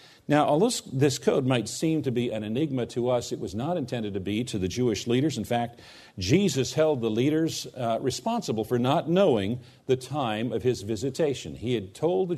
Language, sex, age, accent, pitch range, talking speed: English, male, 50-69, American, 120-155 Hz, 200 wpm